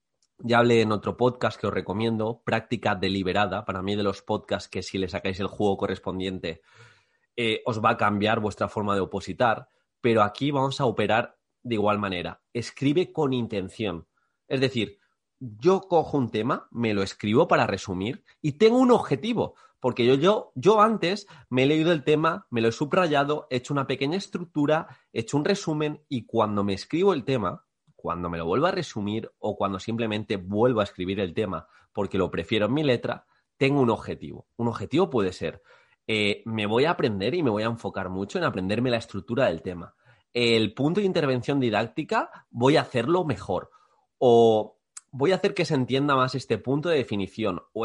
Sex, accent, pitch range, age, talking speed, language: male, Spanish, 105-145 Hz, 30-49, 190 wpm, Spanish